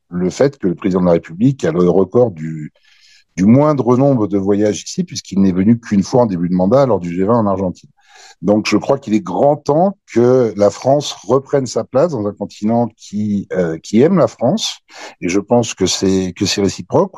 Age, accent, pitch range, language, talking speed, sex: 60-79, French, 90-120 Hz, French, 215 wpm, male